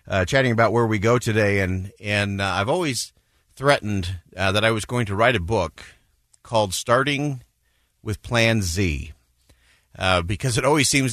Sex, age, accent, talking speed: male, 40-59, American, 175 wpm